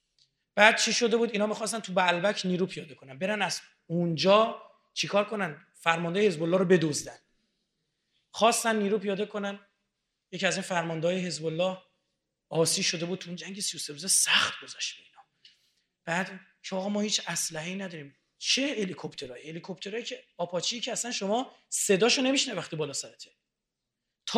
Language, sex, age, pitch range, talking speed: Persian, male, 30-49, 175-220 Hz, 155 wpm